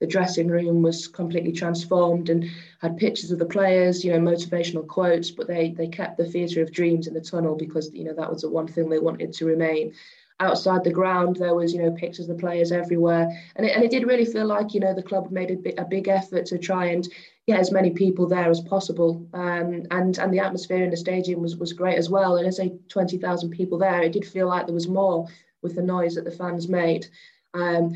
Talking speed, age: 245 wpm, 20-39